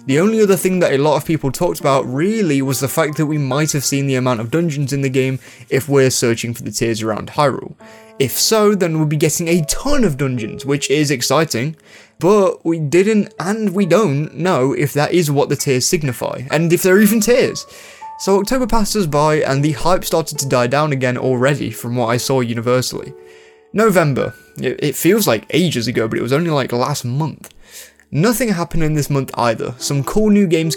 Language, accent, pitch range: English, British, 130-175 Hz